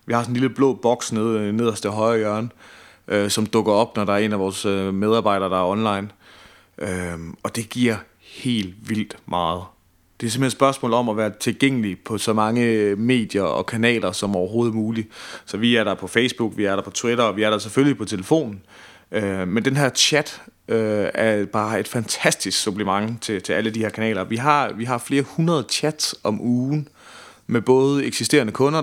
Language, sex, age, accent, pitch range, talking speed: Danish, male, 30-49, native, 100-120 Hz, 205 wpm